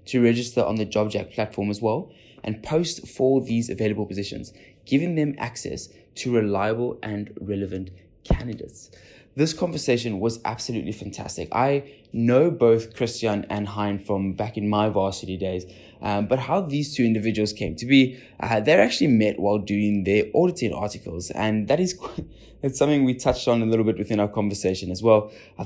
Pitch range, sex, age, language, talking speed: 100-130 Hz, male, 20-39, English, 175 wpm